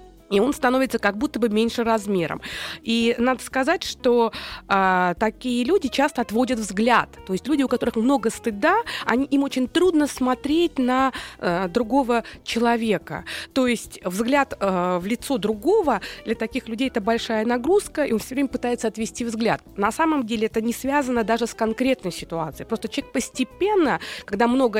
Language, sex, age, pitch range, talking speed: Russian, female, 20-39, 215-270 Hz, 165 wpm